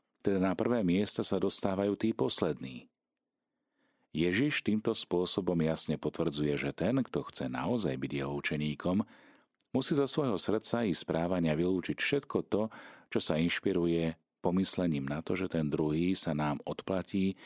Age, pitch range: 40-59, 75-100 Hz